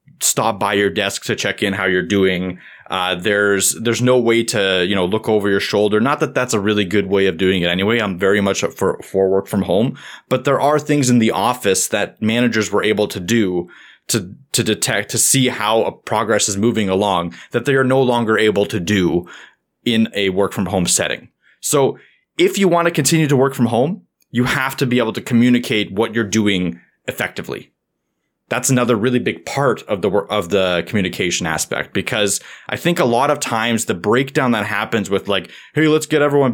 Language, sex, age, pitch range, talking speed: English, male, 20-39, 100-125 Hz, 210 wpm